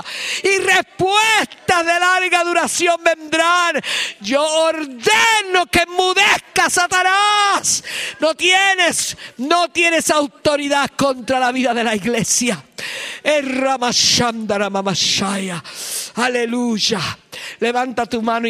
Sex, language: male, English